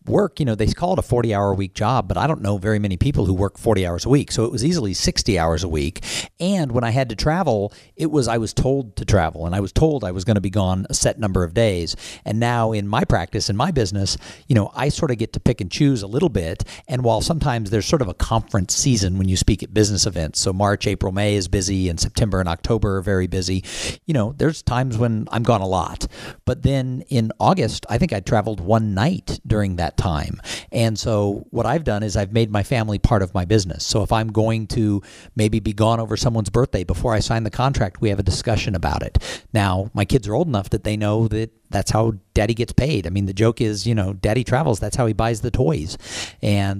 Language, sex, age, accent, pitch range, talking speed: English, male, 50-69, American, 100-120 Hz, 255 wpm